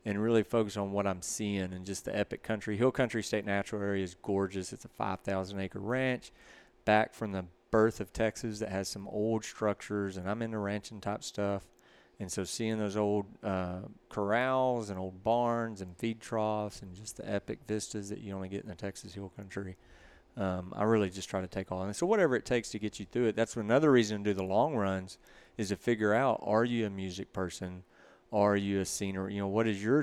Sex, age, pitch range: male, 30-49, 95-110 Hz